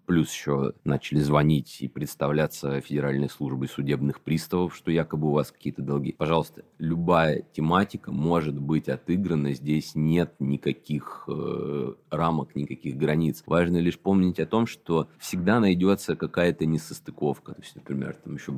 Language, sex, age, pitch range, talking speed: Russian, male, 30-49, 70-80 Hz, 135 wpm